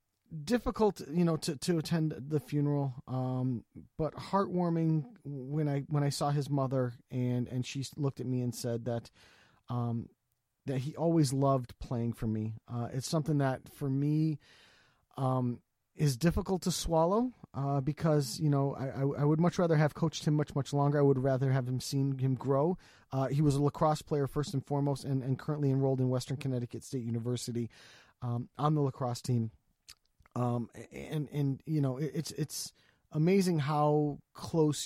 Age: 30-49